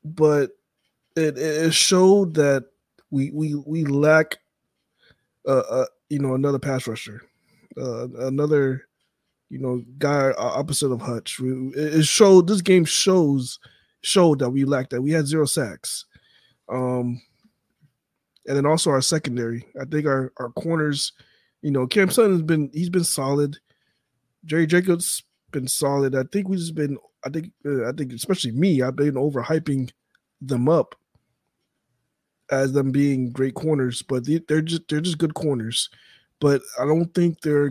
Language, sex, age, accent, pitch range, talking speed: English, male, 20-39, American, 130-155 Hz, 150 wpm